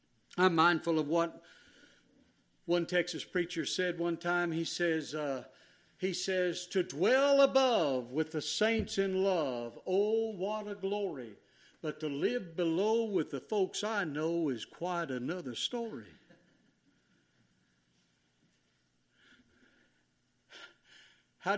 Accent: American